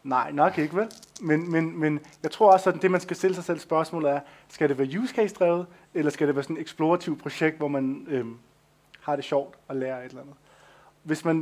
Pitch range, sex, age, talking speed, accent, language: 145-175 Hz, male, 20-39, 220 wpm, native, Danish